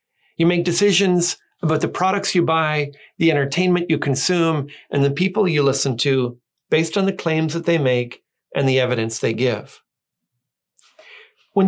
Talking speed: 160 wpm